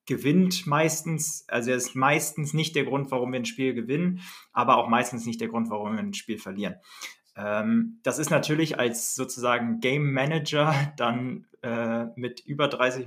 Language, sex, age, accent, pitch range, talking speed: German, male, 20-39, German, 120-155 Hz, 170 wpm